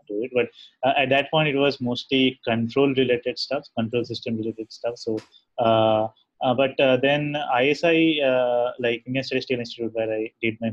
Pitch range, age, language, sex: 115-135 Hz, 20-39, English, male